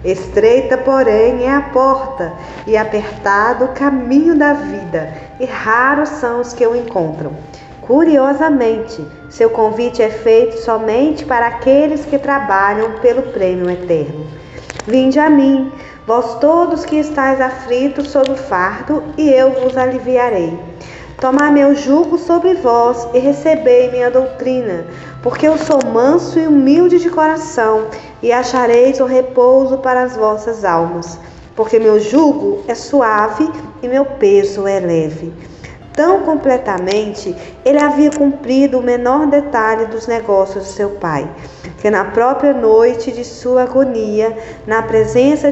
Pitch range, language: 215-280 Hz, Portuguese